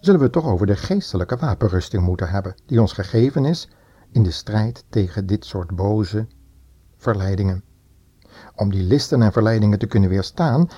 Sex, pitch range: male, 100-140 Hz